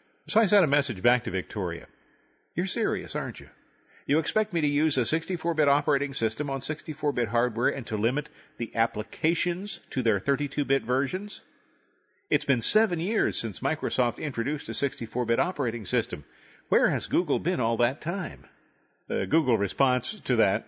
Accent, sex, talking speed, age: American, male, 165 wpm, 50-69